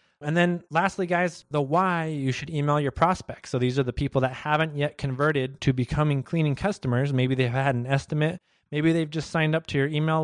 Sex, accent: male, American